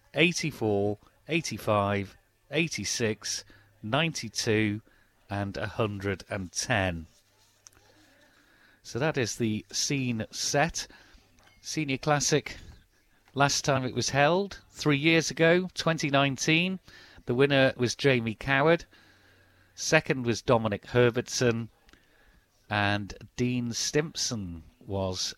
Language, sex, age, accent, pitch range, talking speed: English, male, 40-59, British, 105-140 Hz, 85 wpm